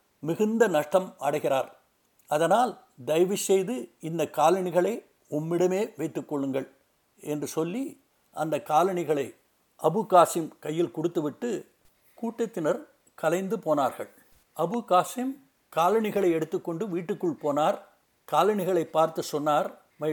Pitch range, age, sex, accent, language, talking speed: 160-210 Hz, 60-79, male, native, Tamil, 90 wpm